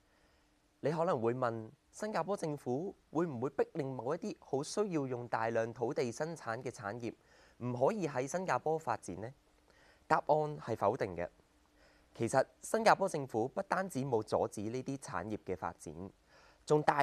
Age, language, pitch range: 20-39, Chinese, 115-155 Hz